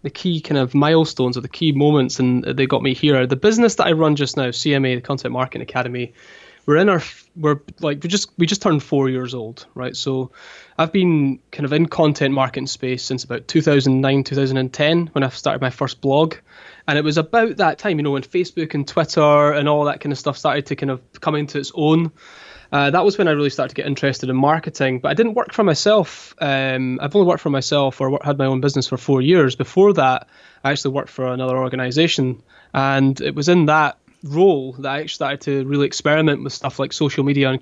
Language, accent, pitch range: English, British, 135-155 Hz